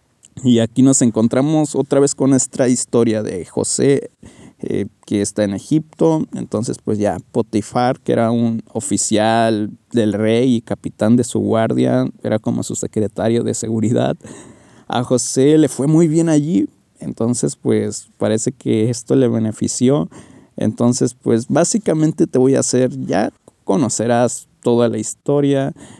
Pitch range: 115-130 Hz